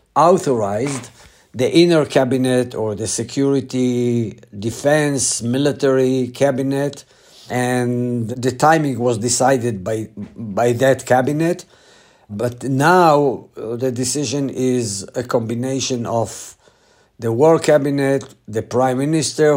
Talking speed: 100 wpm